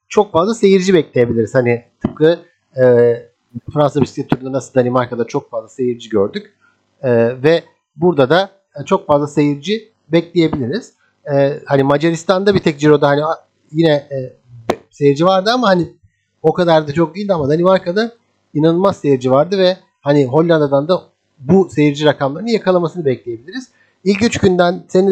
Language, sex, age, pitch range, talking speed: Turkish, male, 50-69, 135-185 Hz, 140 wpm